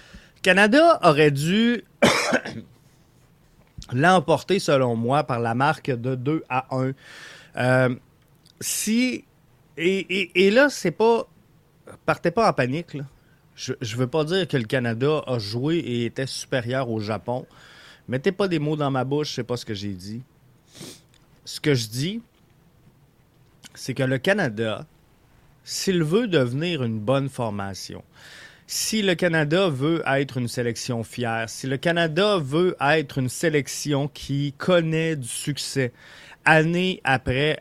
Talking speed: 145 wpm